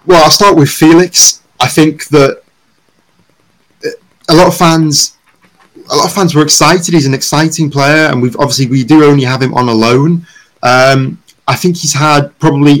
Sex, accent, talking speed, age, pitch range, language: male, British, 190 wpm, 30-49, 120-155 Hz, English